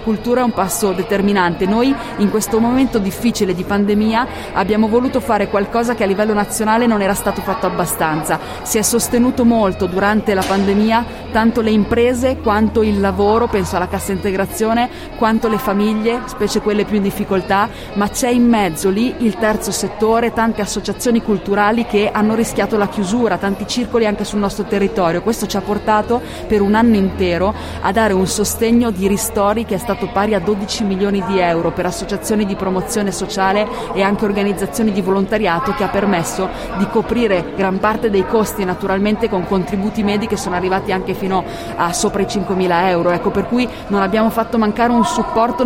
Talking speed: 185 wpm